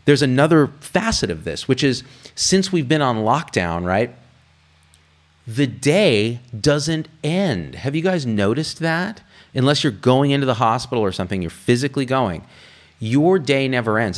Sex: male